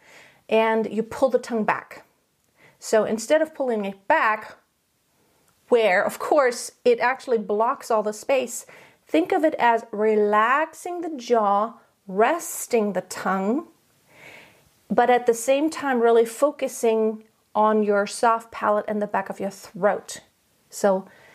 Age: 40-59